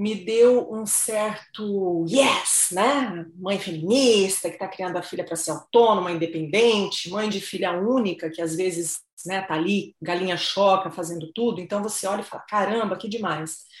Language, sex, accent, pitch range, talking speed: Portuguese, female, Brazilian, 175-225 Hz, 170 wpm